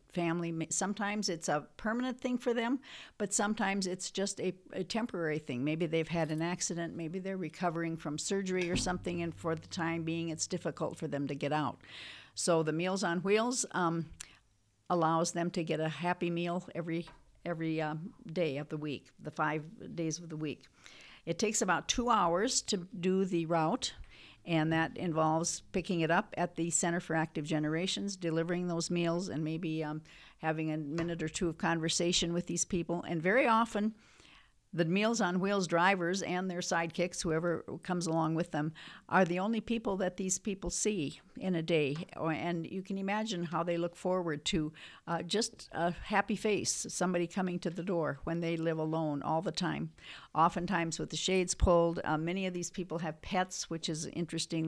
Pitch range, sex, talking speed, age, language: 160-185 Hz, female, 190 wpm, 60-79, English